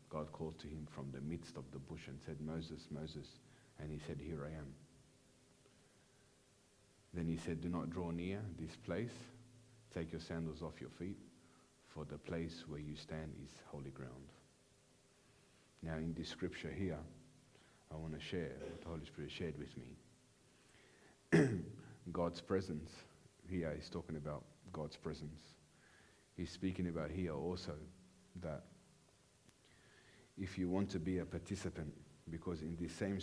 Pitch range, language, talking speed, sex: 80-90 Hz, English, 155 wpm, male